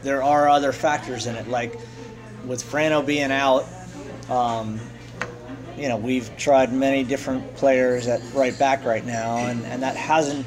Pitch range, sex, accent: 120-135 Hz, male, American